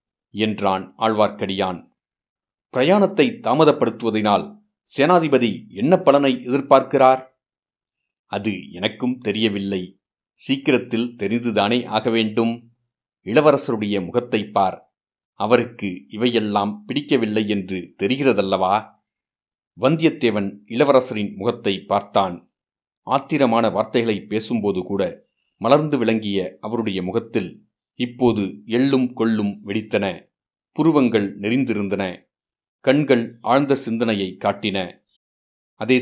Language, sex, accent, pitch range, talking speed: Tamil, male, native, 100-125 Hz, 75 wpm